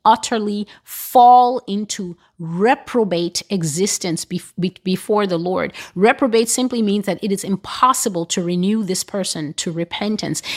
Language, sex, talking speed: English, female, 120 wpm